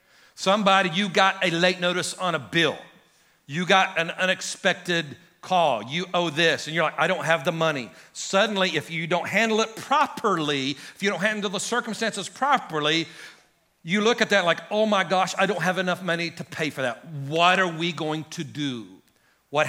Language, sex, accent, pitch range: English, male, American, 165-210 Hz